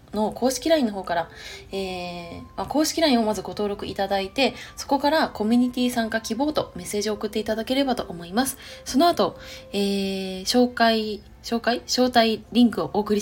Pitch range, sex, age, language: 190-245 Hz, female, 20-39, Japanese